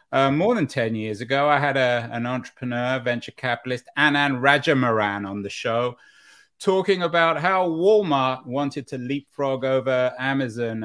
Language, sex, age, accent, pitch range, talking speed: English, male, 30-49, British, 105-140 Hz, 145 wpm